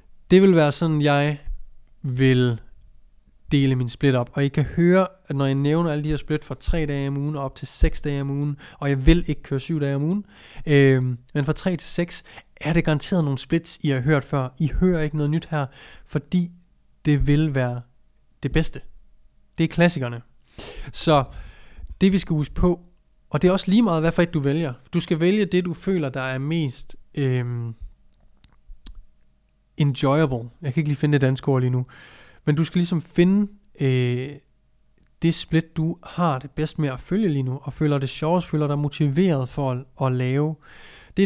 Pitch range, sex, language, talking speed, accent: 135-165 Hz, male, Danish, 205 wpm, native